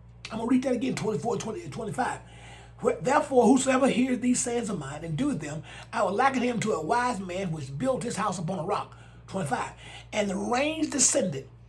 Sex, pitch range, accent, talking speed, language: male, 185-255 Hz, American, 195 wpm, English